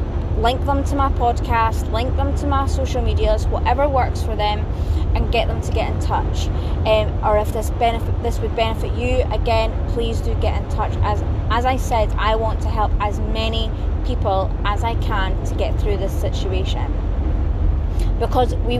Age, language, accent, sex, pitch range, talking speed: 20-39, English, British, female, 80-100 Hz, 185 wpm